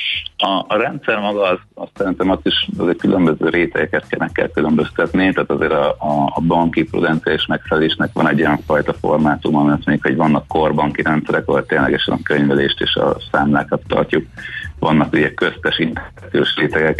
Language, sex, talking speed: Hungarian, male, 160 wpm